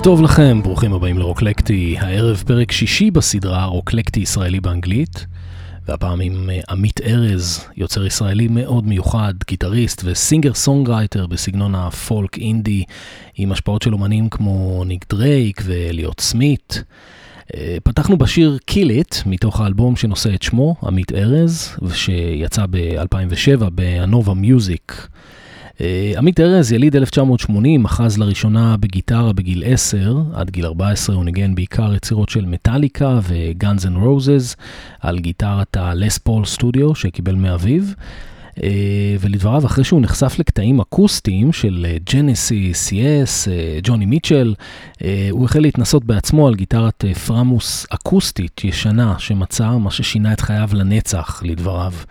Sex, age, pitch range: male, 30-49, 90-120 Hz